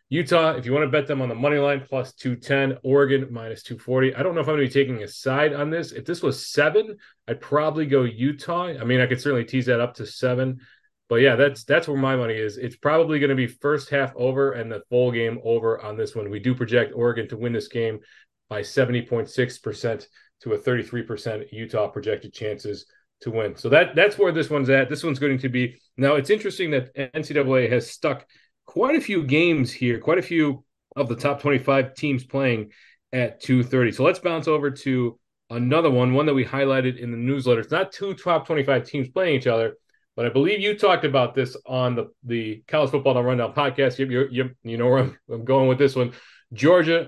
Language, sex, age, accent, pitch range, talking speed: English, male, 30-49, American, 125-150 Hz, 220 wpm